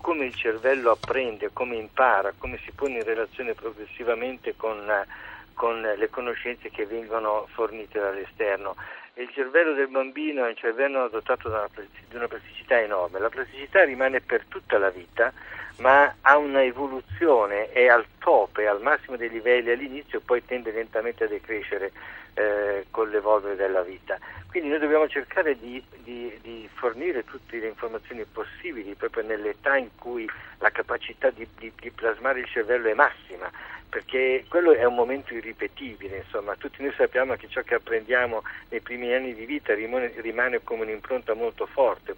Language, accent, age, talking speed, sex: Italian, native, 50-69, 165 wpm, male